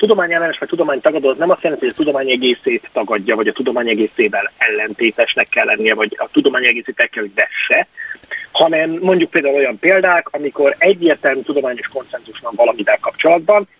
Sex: male